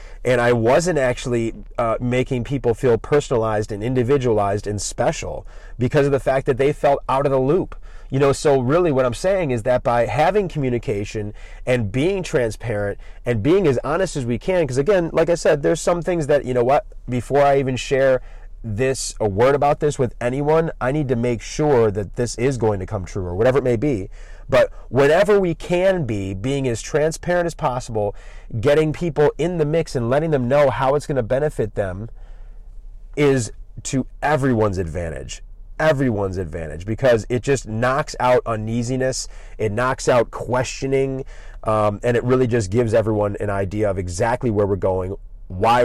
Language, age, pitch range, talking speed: English, 30-49, 105-140 Hz, 185 wpm